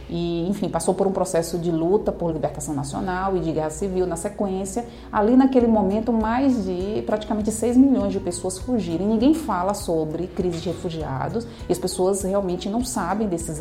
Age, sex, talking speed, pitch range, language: 30-49, female, 185 wpm, 170-220 Hz, Portuguese